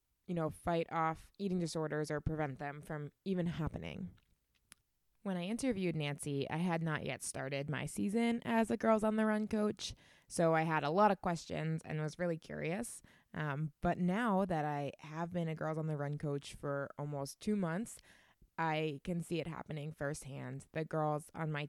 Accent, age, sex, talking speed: American, 20-39, female, 190 wpm